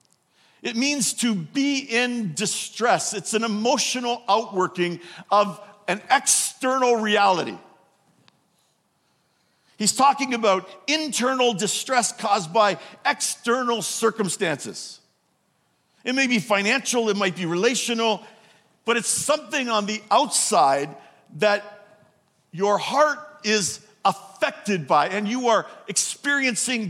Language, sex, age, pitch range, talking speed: English, male, 50-69, 200-245 Hz, 105 wpm